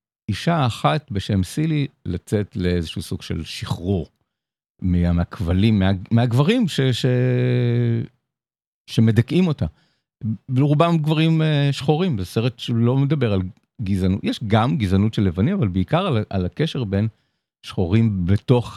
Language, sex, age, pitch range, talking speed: Hebrew, male, 50-69, 100-140 Hz, 120 wpm